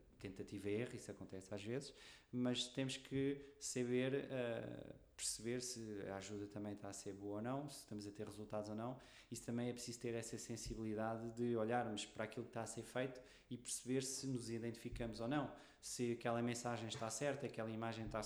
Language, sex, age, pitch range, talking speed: Portuguese, male, 20-39, 110-130 Hz, 195 wpm